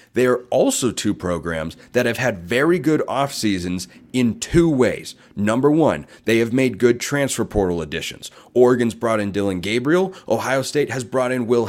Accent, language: American, English